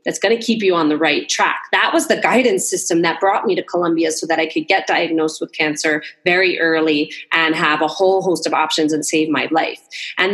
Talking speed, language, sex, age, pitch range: 240 wpm, English, female, 30-49, 175-240 Hz